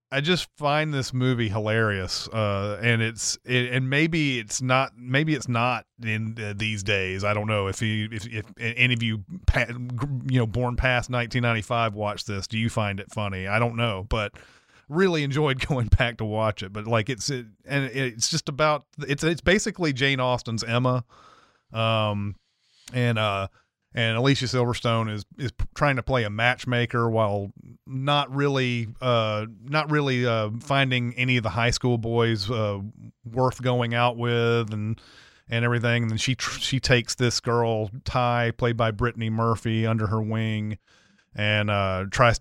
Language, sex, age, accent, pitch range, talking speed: English, male, 30-49, American, 110-125 Hz, 170 wpm